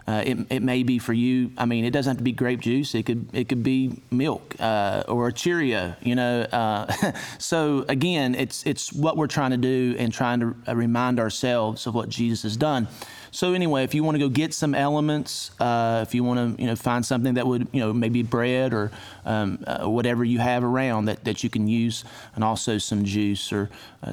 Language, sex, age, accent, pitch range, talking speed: English, male, 30-49, American, 120-170 Hz, 225 wpm